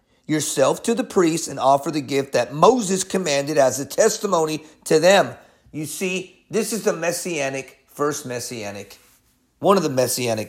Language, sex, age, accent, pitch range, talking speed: English, male, 40-59, American, 135-205 Hz, 160 wpm